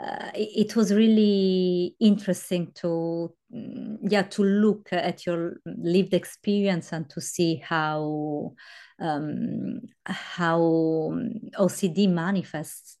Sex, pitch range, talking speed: female, 155-200 Hz, 95 wpm